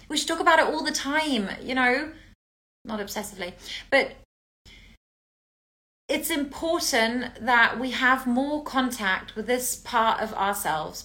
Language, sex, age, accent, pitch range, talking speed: English, female, 30-49, British, 210-255 Hz, 135 wpm